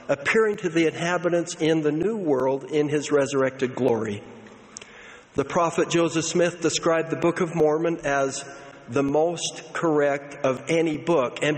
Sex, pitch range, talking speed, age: male, 140-165 Hz, 150 wpm, 60-79